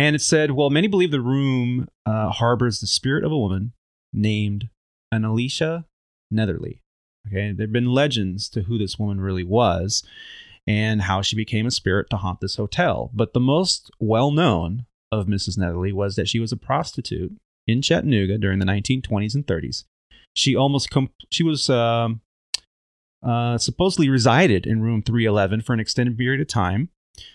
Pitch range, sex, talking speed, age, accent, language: 100-125 Hz, male, 170 wpm, 30-49, American, English